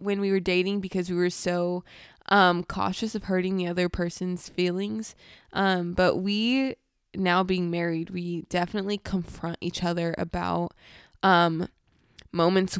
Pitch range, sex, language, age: 175-205 Hz, female, English, 20-39